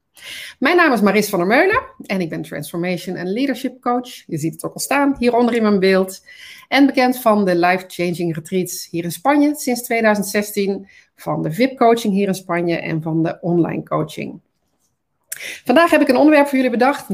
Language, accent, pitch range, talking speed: Dutch, Dutch, 185-260 Hz, 195 wpm